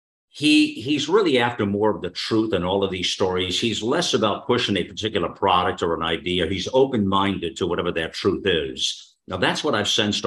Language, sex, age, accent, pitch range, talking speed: English, male, 50-69, American, 85-110 Hz, 210 wpm